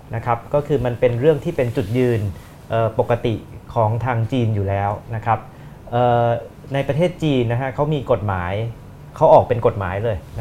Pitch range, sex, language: 115-145 Hz, male, Thai